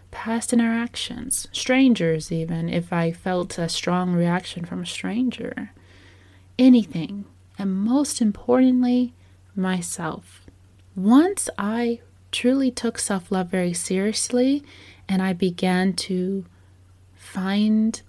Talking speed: 100 wpm